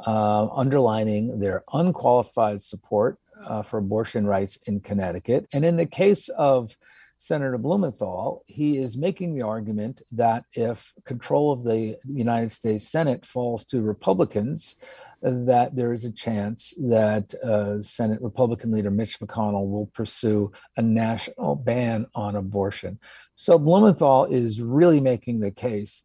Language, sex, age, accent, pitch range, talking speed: English, male, 50-69, American, 105-125 Hz, 140 wpm